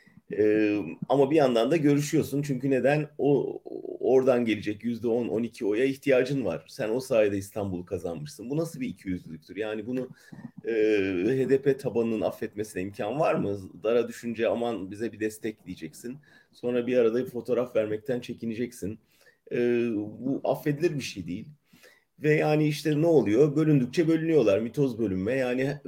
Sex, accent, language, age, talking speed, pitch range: male, Turkish, German, 40-59, 155 wpm, 115-150 Hz